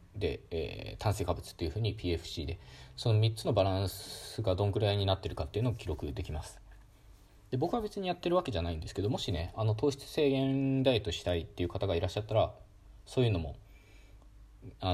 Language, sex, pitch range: Japanese, male, 95-110 Hz